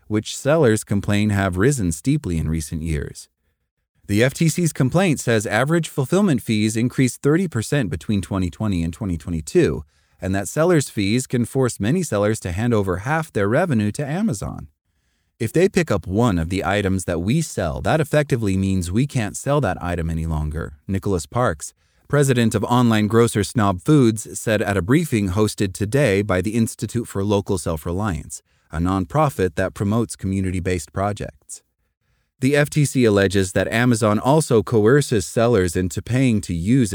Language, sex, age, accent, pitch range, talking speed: English, male, 30-49, American, 90-130 Hz, 160 wpm